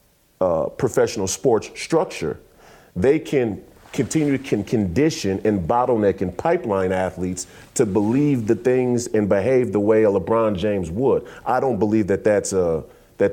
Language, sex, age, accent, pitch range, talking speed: English, male, 40-59, American, 95-120 Hz, 150 wpm